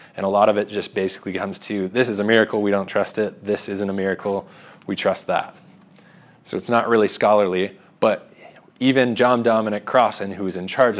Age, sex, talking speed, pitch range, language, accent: 20-39, male, 200 wpm, 105-140 Hz, English, American